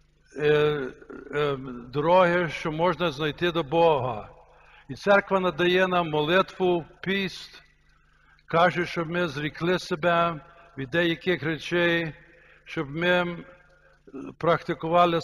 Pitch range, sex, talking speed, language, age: 150-175 Hz, male, 90 wpm, Ukrainian, 60-79